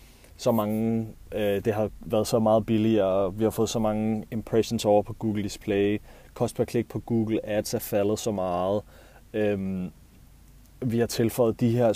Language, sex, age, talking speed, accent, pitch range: Danish, male, 30-49, 175 wpm, native, 105-120 Hz